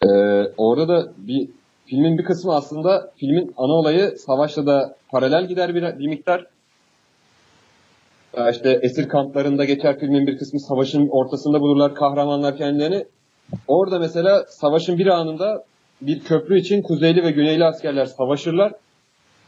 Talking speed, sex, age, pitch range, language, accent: 135 wpm, male, 30-49, 140-170 Hz, Turkish, native